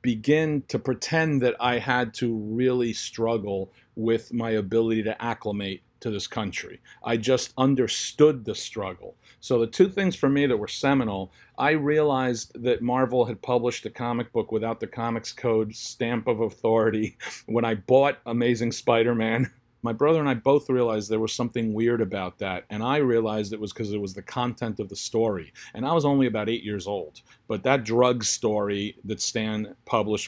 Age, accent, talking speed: 50-69, American, 185 wpm